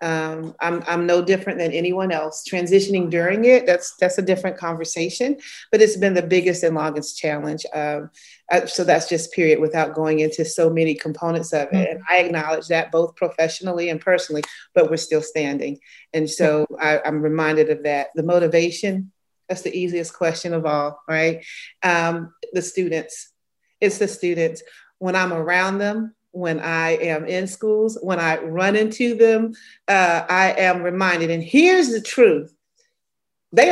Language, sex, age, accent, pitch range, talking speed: English, female, 40-59, American, 170-255 Hz, 165 wpm